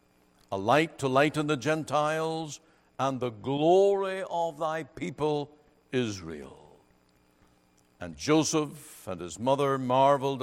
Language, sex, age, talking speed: English, male, 60-79, 110 wpm